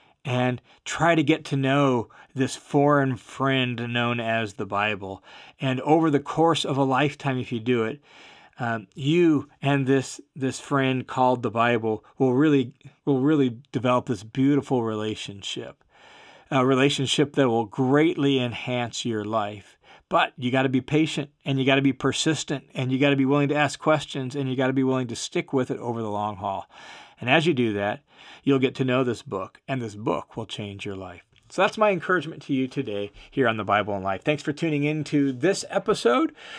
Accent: American